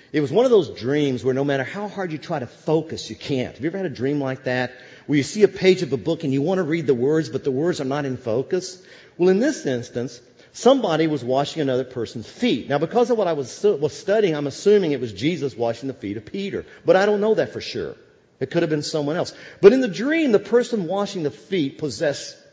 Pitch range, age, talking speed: 150-225 Hz, 50-69, 260 wpm